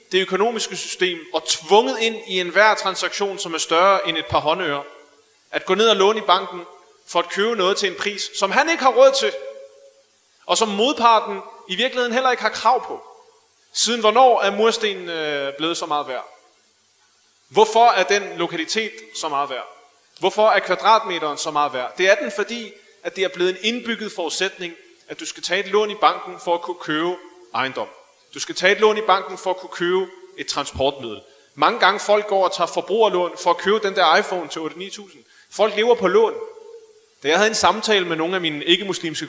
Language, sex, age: Danish, male, 30-49